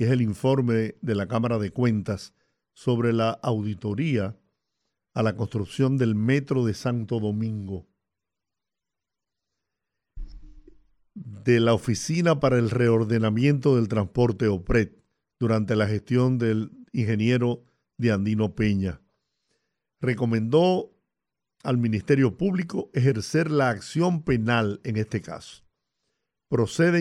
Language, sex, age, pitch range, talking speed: Spanish, male, 50-69, 110-145 Hz, 110 wpm